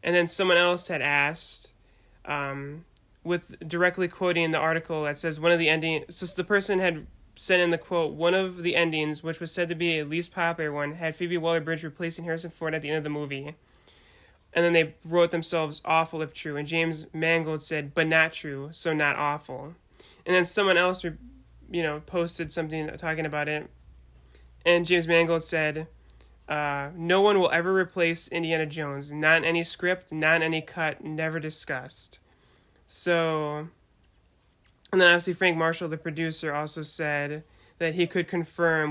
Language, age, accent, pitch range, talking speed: English, 20-39, American, 150-170 Hz, 175 wpm